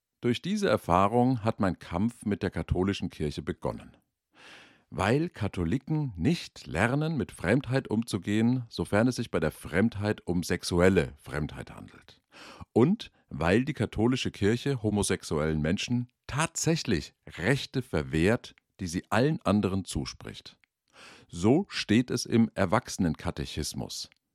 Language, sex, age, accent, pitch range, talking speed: German, male, 50-69, German, 90-125 Hz, 120 wpm